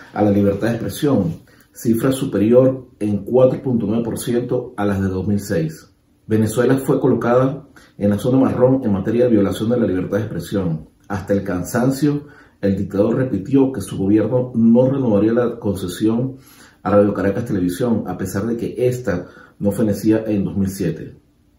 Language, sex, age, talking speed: Spanish, male, 40-59, 155 wpm